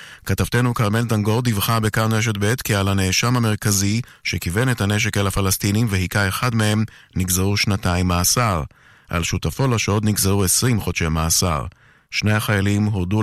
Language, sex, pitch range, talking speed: Hebrew, male, 95-115 Hz, 150 wpm